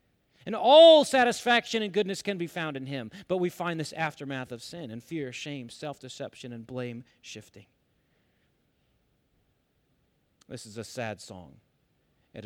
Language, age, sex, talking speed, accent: English, 40-59, male, 145 wpm, American